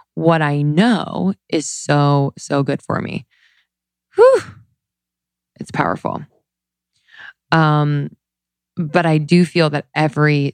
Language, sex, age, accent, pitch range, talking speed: English, female, 20-39, American, 140-175 Hz, 110 wpm